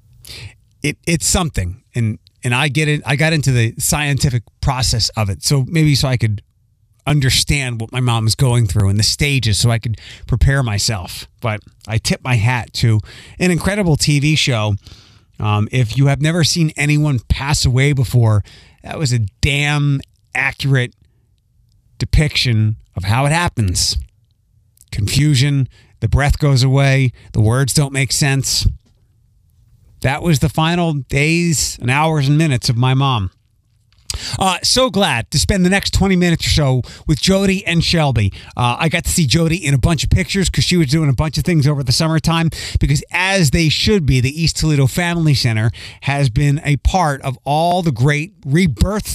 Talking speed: 175 wpm